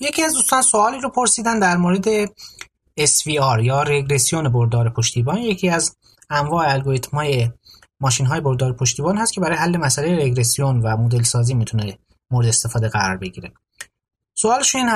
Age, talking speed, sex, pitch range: 30-49, 145 wpm, male, 120-180 Hz